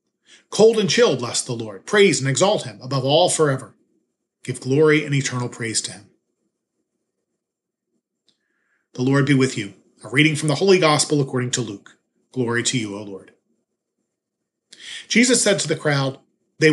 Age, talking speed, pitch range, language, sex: 40-59, 160 wpm, 125-165 Hz, English, male